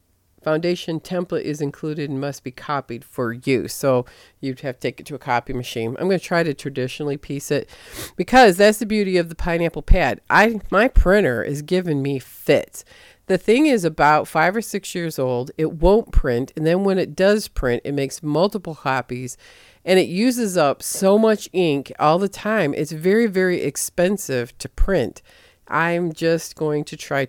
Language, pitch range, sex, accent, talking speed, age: English, 130-190 Hz, female, American, 190 wpm, 40-59